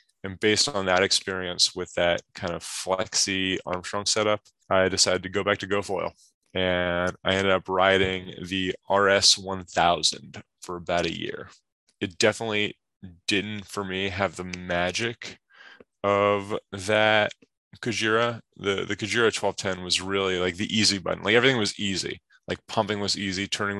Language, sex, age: English, male, 20-39